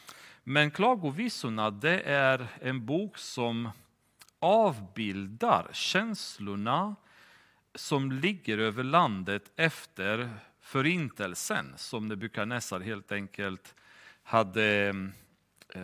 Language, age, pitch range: Swedish, 40-59, 105-135 Hz